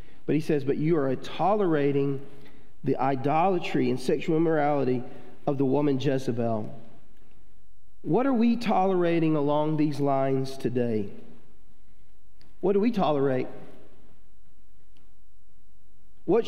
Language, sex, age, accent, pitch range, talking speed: English, male, 40-59, American, 135-180 Hz, 105 wpm